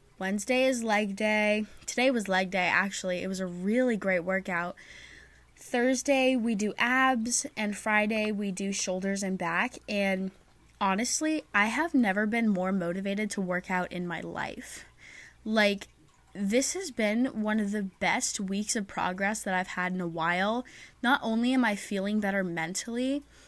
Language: English